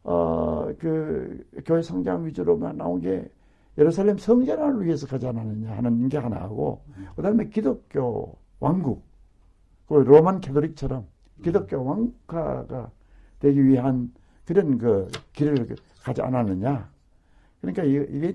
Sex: male